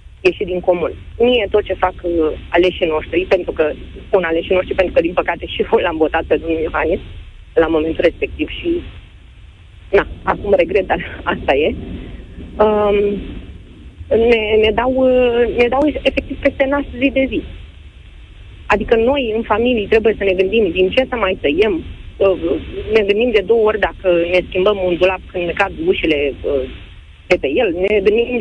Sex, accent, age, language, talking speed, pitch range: female, native, 30-49, Romanian, 170 wpm, 165-230 Hz